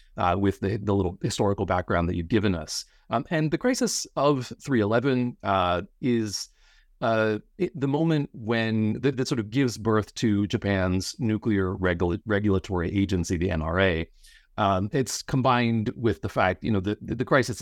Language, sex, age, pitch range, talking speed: English, male, 30-49, 90-120 Hz, 165 wpm